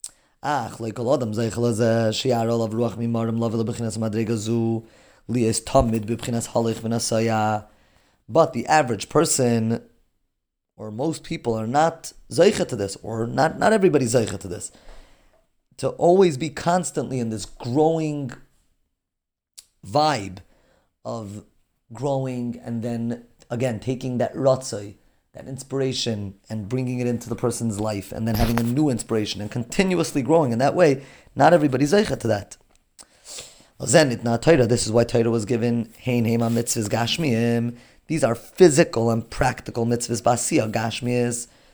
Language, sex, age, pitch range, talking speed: English, male, 30-49, 115-135 Hz, 105 wpm